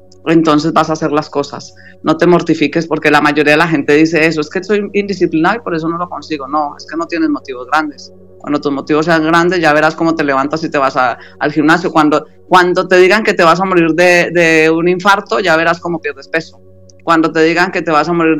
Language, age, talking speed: Spanish, 30-49, 250 wpm